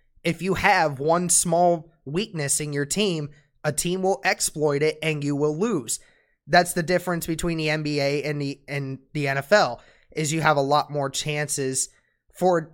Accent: American